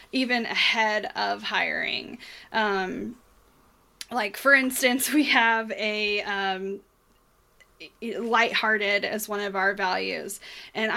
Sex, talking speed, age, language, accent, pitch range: female, 105 wpm, 10-29, English, American, 215-255 Hz